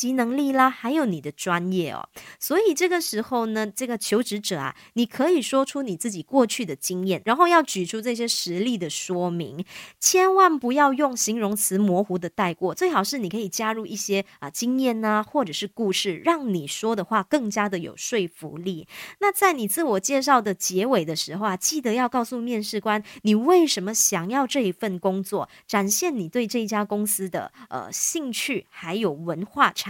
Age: 20-39